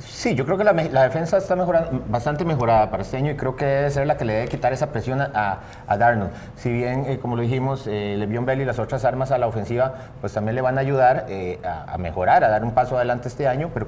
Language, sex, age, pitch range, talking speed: Spanish, male, 40-59, 110-135 Hz, 270 wpm